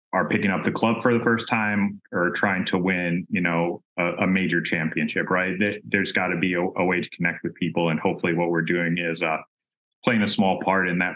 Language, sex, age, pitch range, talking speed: English, male, 30-49, 85-95 Hz, 235 wpm